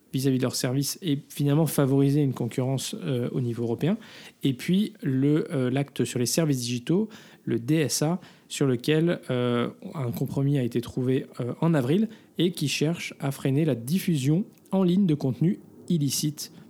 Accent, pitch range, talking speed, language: French, 125-165 Hz, 165 wpm, French